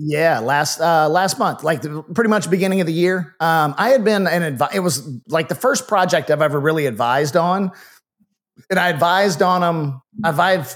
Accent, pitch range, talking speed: American, 145-170 Hz, 200 wpm